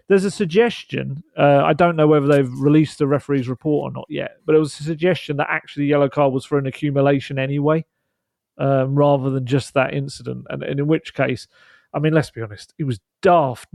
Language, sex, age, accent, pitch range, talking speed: English, male, 40-59, British, 135-160 Hz, 215 wpm